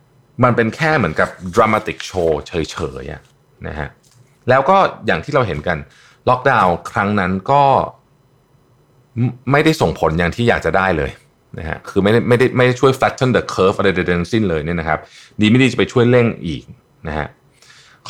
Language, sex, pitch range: Thai, male, 90-125 Hz